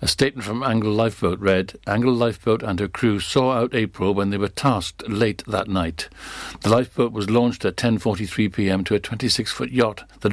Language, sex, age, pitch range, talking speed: English, male, 60-79, 100-120 Hz, 185 wpm